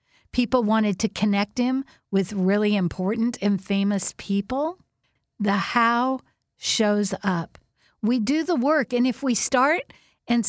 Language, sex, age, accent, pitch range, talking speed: English, female, 50-69, American, 200-245 Hz, 135 wpm